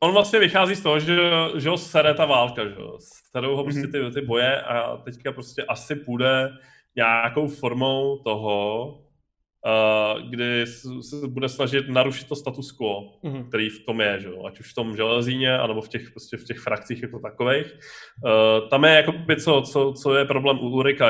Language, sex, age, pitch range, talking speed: Czech, male, 20-39, 120-140 Hz, 180 wpm